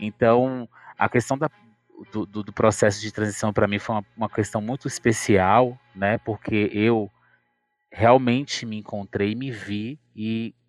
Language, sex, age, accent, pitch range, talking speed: Portuguese, male, 20-39, Brazilian, 105-130 Hz, 145 wpm